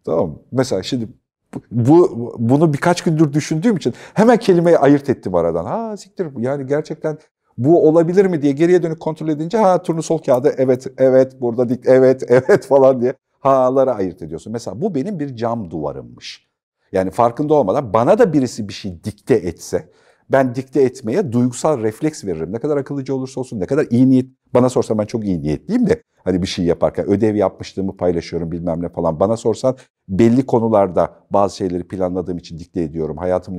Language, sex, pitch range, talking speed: Turkish, male, 100-155 Hz, 180 wpm